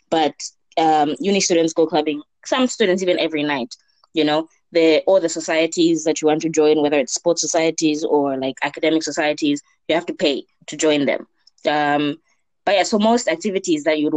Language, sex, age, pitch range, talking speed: English, female, 20-39, 145-170 Hz, 185 wpm